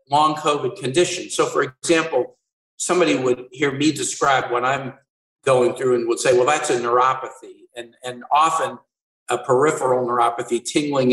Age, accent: 50-69, American